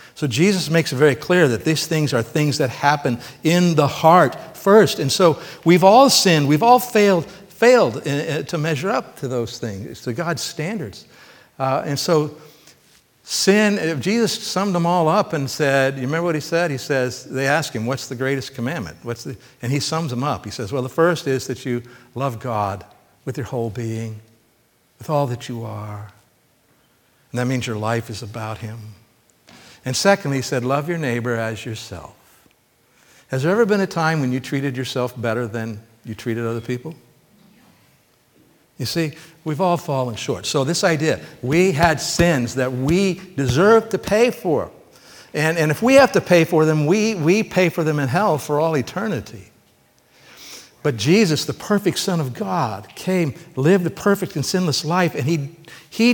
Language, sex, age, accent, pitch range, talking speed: English, male, 60-79, American, 125-175 Hz, 185 wpm